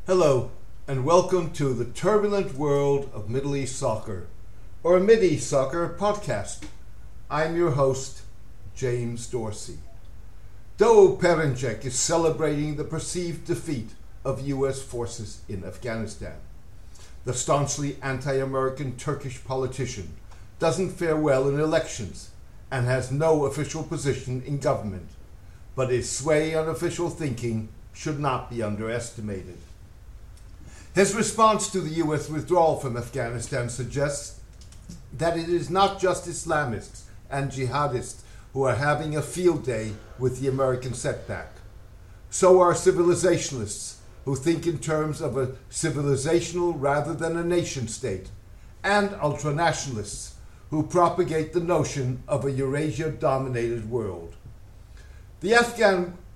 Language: English